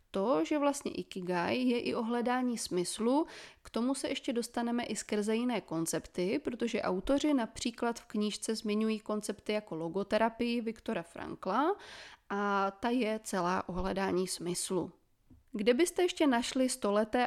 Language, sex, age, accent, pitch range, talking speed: Czech, female, 20-39, native, 200-255 Hz, 135 wpm